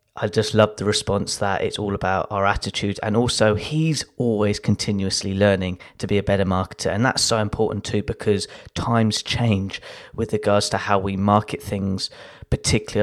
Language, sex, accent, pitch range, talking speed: English, male, British, 100-110 Hz, 175 wpm